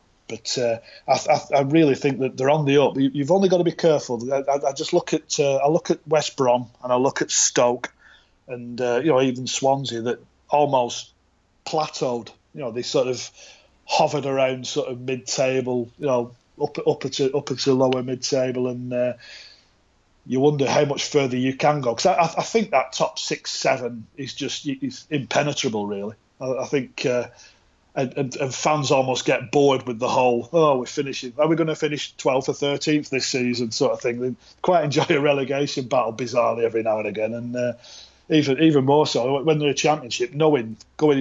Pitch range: 125-145 Hz